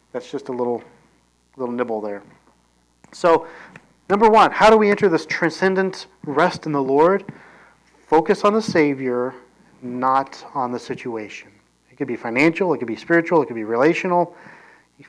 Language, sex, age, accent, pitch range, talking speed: English, male, 40-59, American, 105-170 Hz, 165 wpm